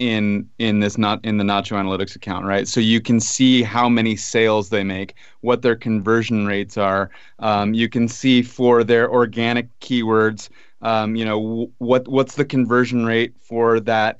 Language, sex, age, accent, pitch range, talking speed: English, male, 30-49, American, 115-130 Hz, 180 wpm